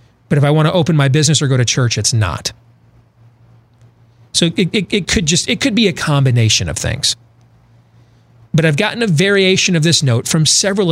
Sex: male